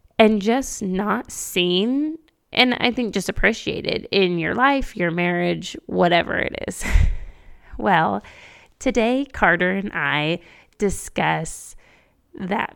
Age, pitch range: 20-39, 180-220 Hz